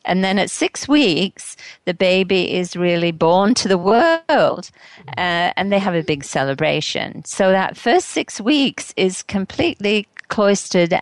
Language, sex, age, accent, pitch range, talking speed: English, female, 50-69, British, 155-195 Hz, 155 wpm